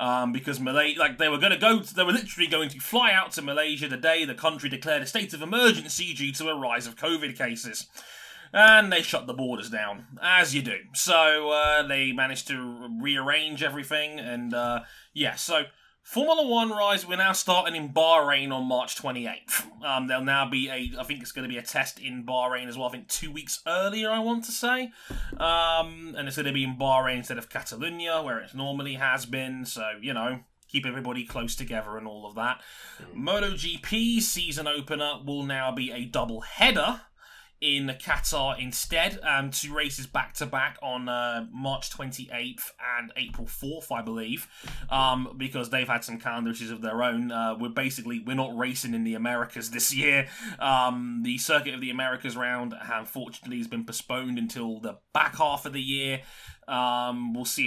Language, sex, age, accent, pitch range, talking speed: English, male, 20-39, British, 125-155 Hz, 195 wpm